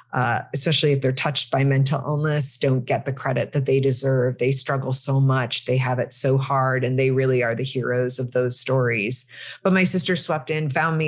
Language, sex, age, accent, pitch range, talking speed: English, female, 30-49, American, 130-155 Hz, 215 wpm